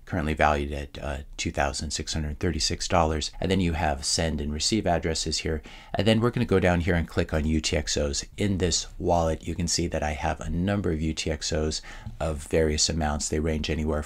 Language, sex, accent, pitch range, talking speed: English, male, American, 75-85 Hz, 190 wpm